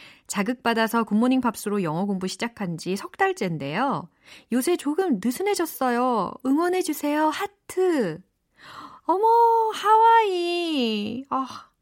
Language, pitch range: Korean, 180-275 Hz